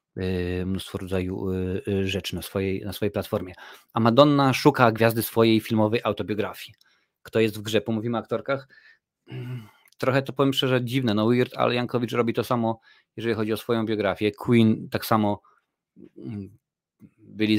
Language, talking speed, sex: Polish, 140 wpm, male